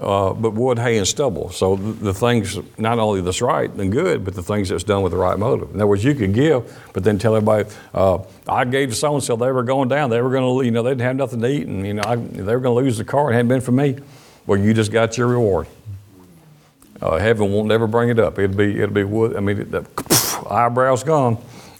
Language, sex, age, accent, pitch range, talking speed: English, male, 50-69, American, 95-120 Hz, 260 wpm